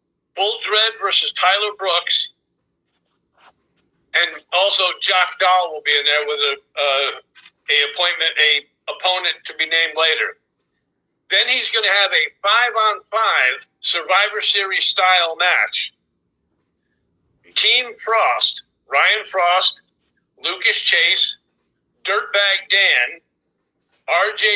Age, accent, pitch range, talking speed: 50-69, American, 170-215 Hz, 110 wpm